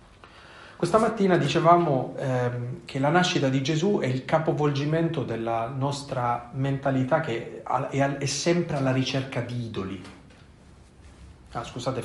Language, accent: Italian, native